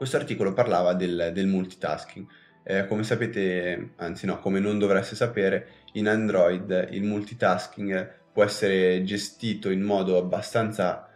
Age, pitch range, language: 20-39, 90-105 Hz, Italian